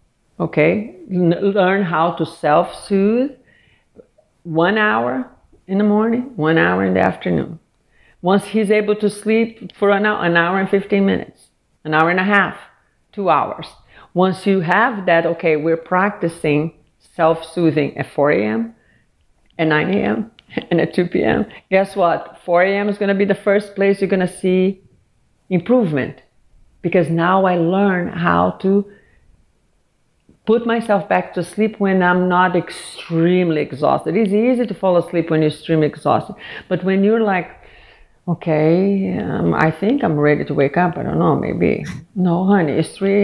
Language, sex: English, female